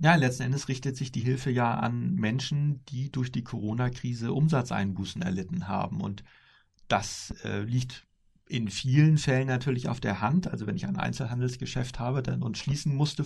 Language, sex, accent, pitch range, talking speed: German, male, German, 110-135 Hz, 170 wpm